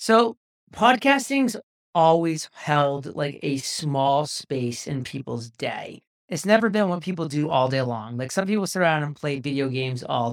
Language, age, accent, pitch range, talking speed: English, 40-59, American, 140-175 Hz, 175 wpm